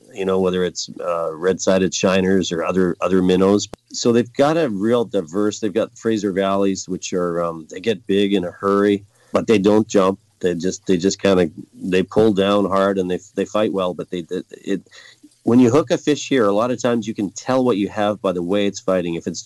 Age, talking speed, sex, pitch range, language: 40-59, 235 wpm, male, 90-110 Hz, English